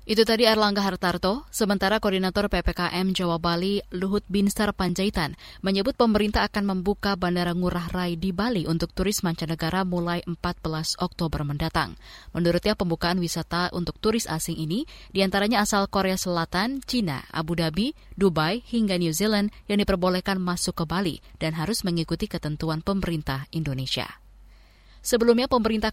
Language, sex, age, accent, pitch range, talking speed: Indonesian, female, 20-39, native, 165-205 Hz, 135 wpm